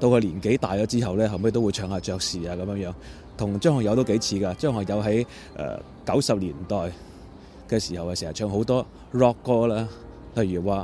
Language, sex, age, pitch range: Chinese, male, 20-39, 95-120 Hz